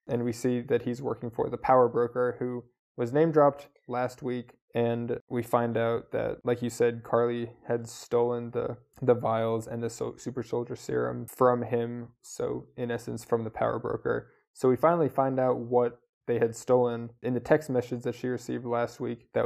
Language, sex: English, male